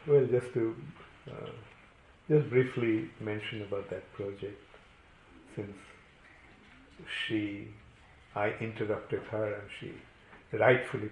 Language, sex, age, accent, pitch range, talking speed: English, male, 50-69, Indian, 105-120 Hz, 95 wpm